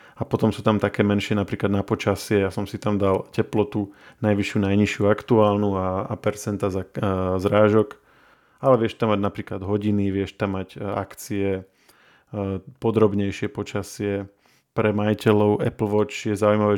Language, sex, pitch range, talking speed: Slovak, male, 100-110 Hz, 145 wpm